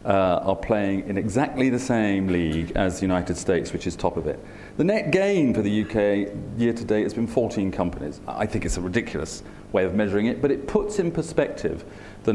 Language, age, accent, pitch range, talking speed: English, 40-59, British, 95-125 Hz, 220 wpm